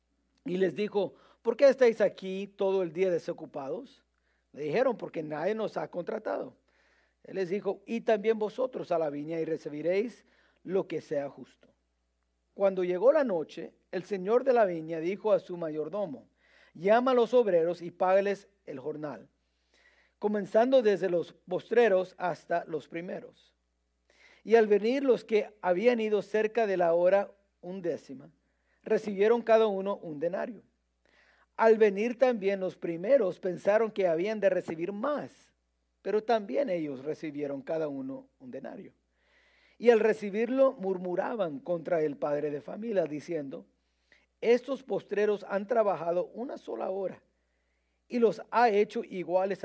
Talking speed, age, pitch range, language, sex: 145 wpm, 50-69, 160-220 Hz, English, male